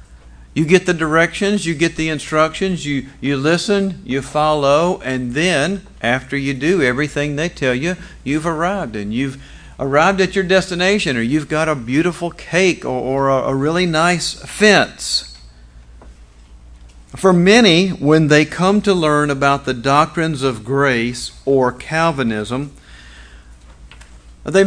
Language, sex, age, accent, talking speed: English, male, 50-69, American, 140 wpm